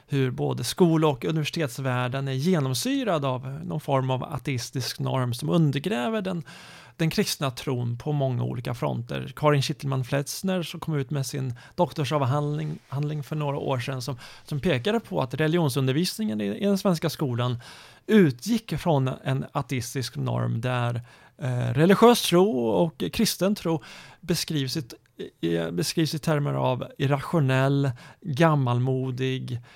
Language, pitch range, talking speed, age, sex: Swedish, 130-165 Hz, 135 wpm, 30-49, male